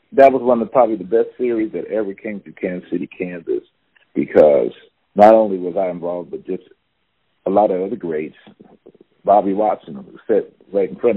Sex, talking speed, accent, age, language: male, 190 wpm, American, 50-69, English